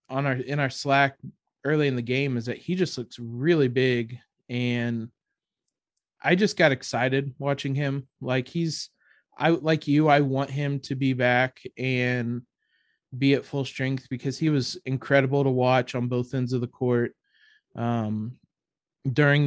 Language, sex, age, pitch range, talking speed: English, male, 20-39, 125-145 Hz, 165 wpm